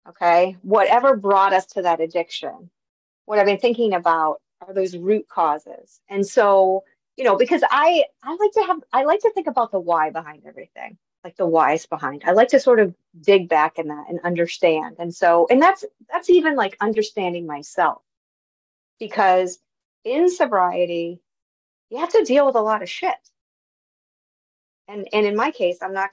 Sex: female